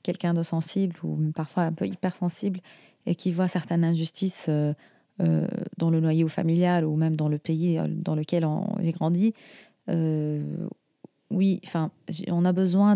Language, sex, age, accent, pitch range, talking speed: French, female, 30-49, French, 155-185 Hz, 160 wpm